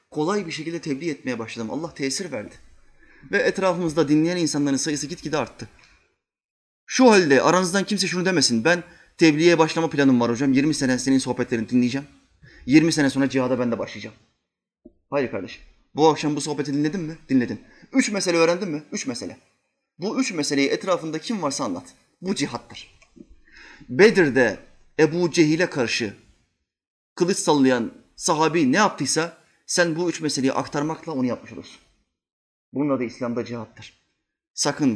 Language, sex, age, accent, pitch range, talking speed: Turkish, male, 30-49, native, 130-175 Hz, 150 wpm